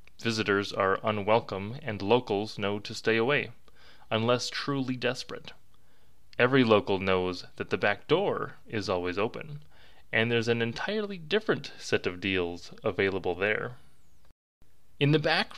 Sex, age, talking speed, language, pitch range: male, 20-39, 135 wpm, English, 105-135 Hz